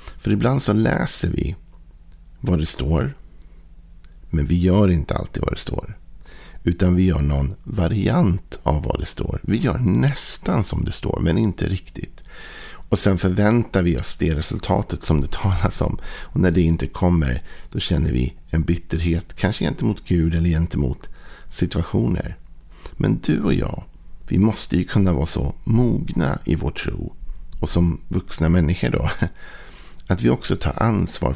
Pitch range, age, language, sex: 80-95 Hz, 50-69, Swedish, male